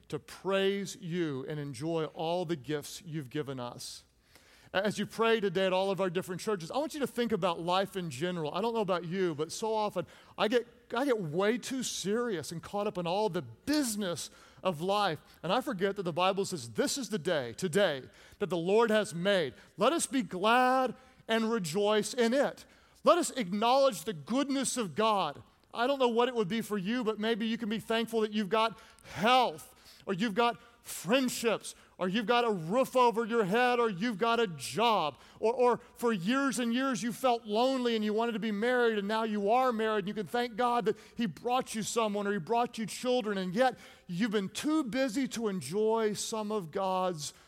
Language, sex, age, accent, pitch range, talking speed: English, male, 40-59, American, 170-230 Hz, 210 wpm